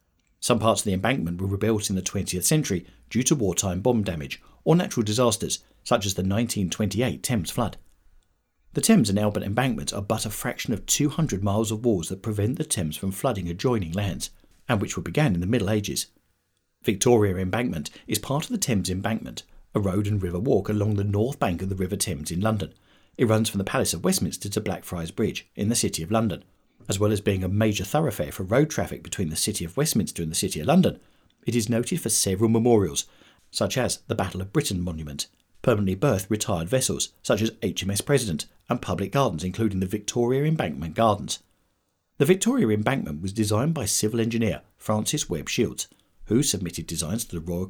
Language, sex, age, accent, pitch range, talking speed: English, male, 40-59, British, 95-115 Hz, 200 wpm